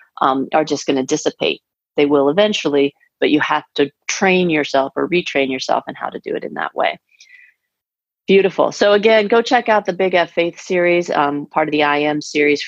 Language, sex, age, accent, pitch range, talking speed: English, female, 30-49, American, 145-170 Hz, 205 wpm